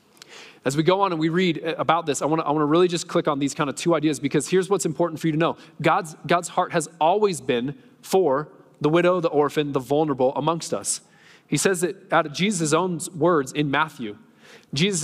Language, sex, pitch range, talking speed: English, male, 150-195 Hz, 225 wpm